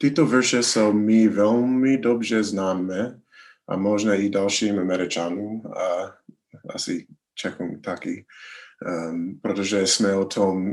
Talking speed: 115 wpm